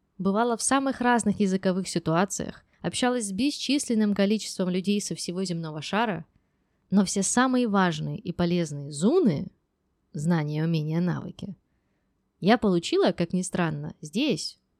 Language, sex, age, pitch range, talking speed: Russian, female, 20-39, 165-210 Hz, 125 wpm